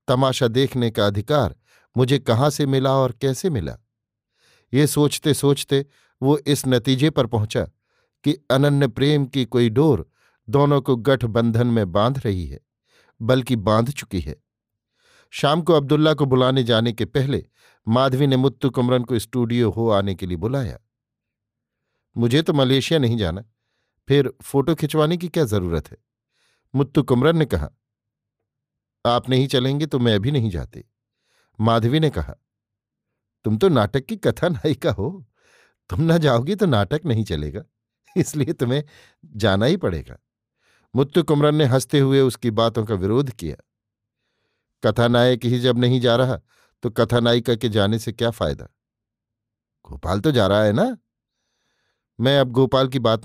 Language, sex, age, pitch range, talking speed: Hindi, male, 50-69, 115-140 Hz, 150 wpm